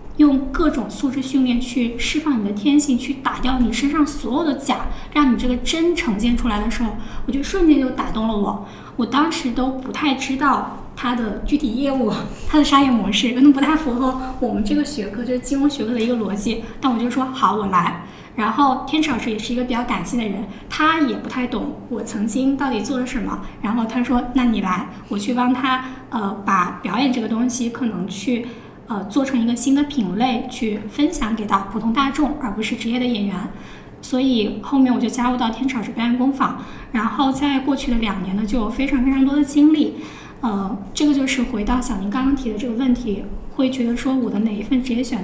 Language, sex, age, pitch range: Chinese, female, 10-29, 225-270 Hz